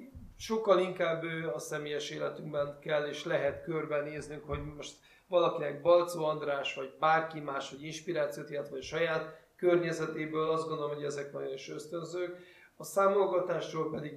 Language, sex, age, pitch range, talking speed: Hungarian, male, 30-49, 150-170 Hz, 140 wpm